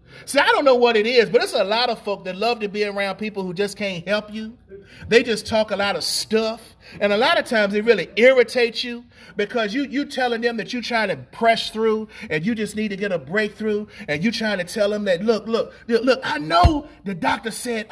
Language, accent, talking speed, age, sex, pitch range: English, American, 250 wpm, 40-59, male, 220-290 Hz